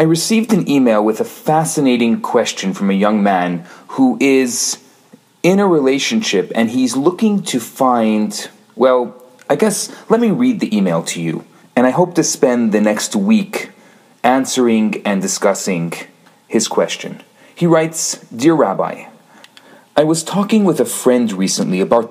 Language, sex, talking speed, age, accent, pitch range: English, male, 155 wpm, 40-59, Canadian, 125-205 Hz